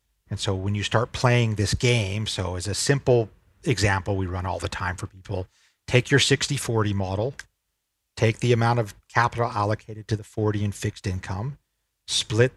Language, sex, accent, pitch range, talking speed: English, male, American, 95-120 Hz, 175 wpm